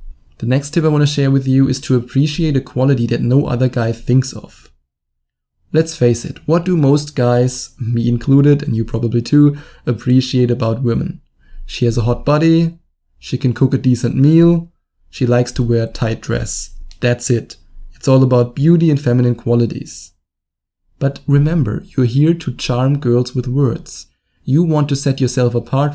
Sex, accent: male, German